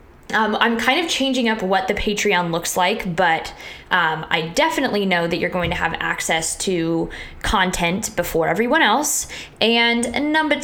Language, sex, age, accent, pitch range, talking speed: English, female, 20-39, American, 175-230 Hz, 165 wpm